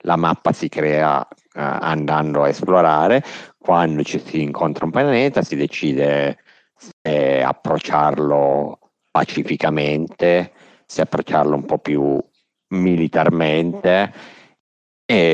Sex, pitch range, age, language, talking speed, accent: male, 70-80 Hz, 50-69, Italian, 100 wpm, native